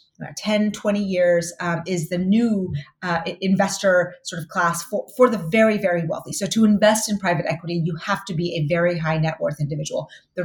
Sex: female